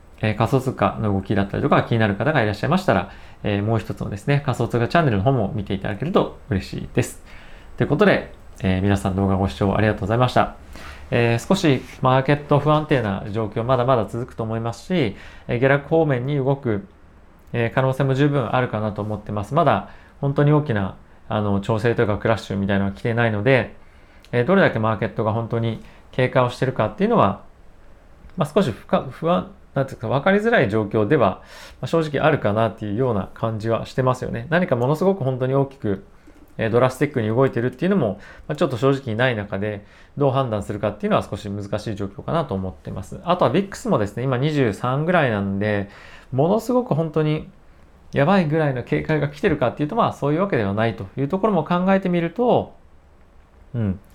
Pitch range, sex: 100-140 Hz, male